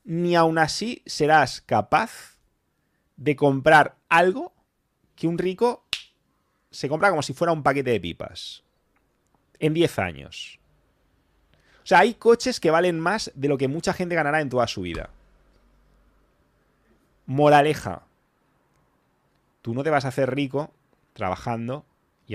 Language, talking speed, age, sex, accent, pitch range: English, 135 wpm, 30-49, male, Spanish, 115-170 Hz